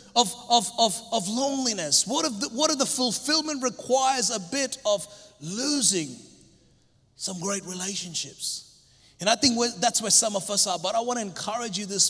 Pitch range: 205-260 Hz